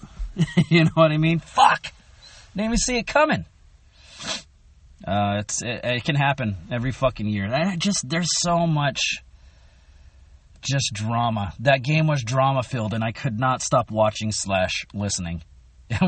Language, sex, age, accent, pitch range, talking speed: English, male, 30-49, American, 100-155 Hz, 145 wpm